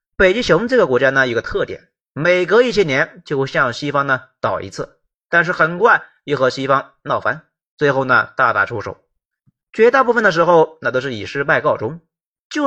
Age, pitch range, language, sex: 30-49, 155-245 Hz, Chinese, male